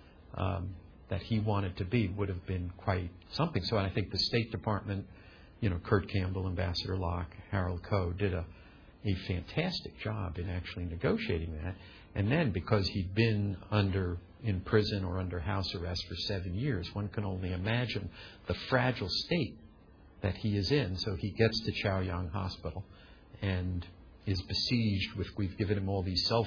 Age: 50-69